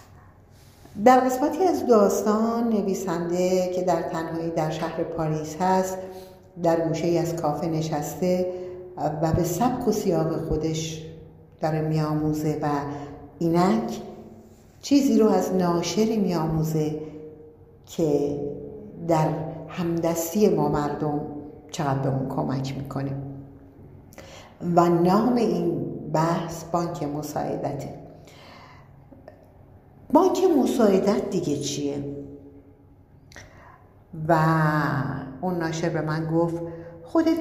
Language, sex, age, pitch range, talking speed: Persian, female, 50-69, 145-190 Hz, 95 wpm